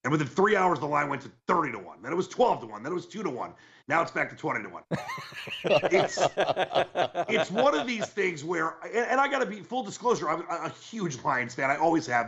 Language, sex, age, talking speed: English, male, 40-59, 260 wpm